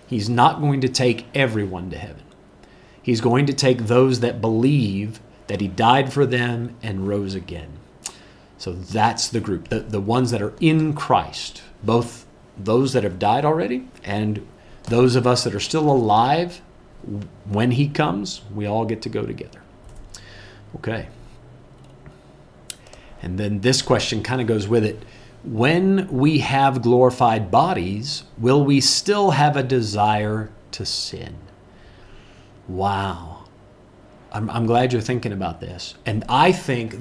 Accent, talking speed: American, 145 wpm